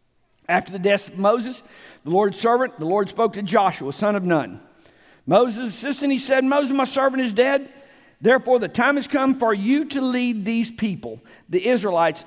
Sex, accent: male, American